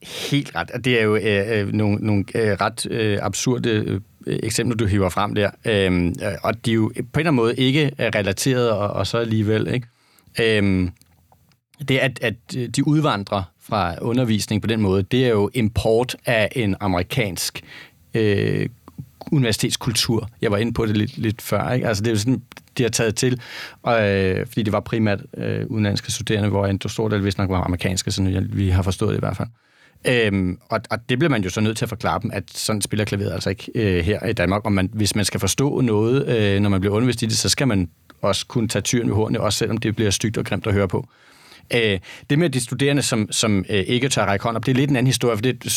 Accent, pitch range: native, 100-125 Hz